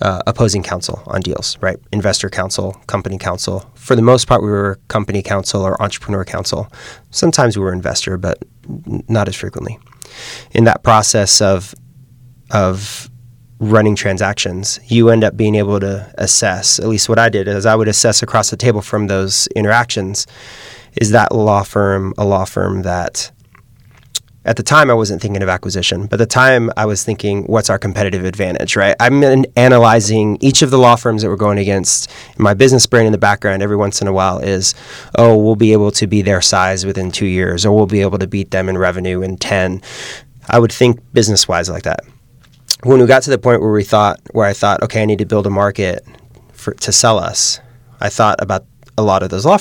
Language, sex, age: English, male, 30-49